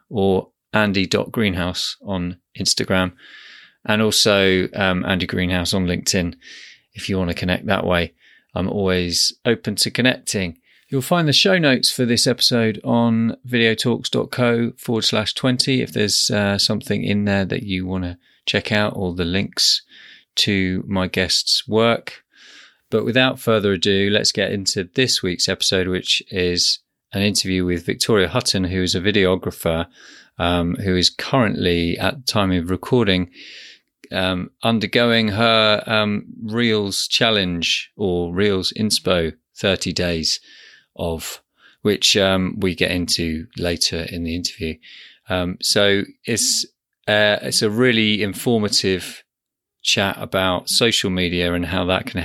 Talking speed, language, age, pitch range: 140 wpm, English, 30-49, 90-110 Hz